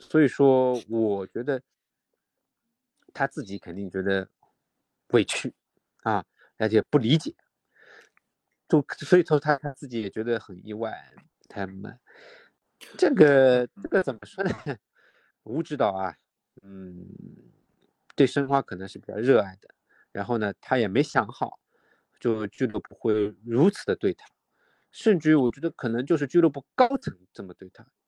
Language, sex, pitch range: Chinese, male, 105-140 Hz